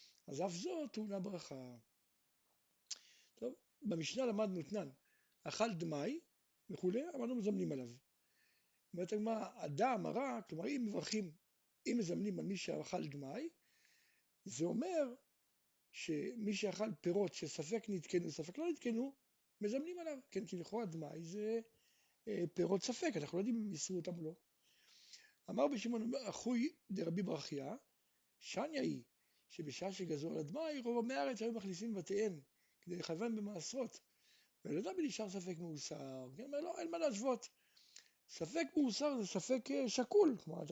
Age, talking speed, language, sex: 60-79, 135 wpm, Hebrew, male